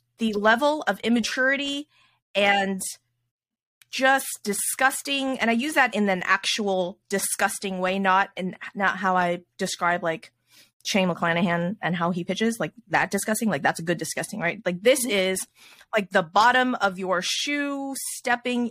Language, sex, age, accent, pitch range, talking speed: English, female, 20-39, American, 185-235 Hz, 155 wpm